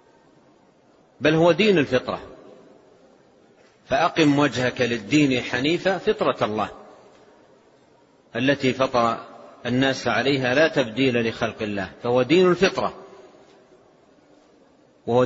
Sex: male